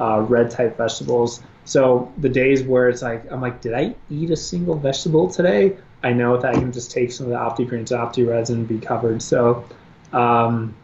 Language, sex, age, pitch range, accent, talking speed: English, male, 20-39, 120-140 Hz, American, 210 wpm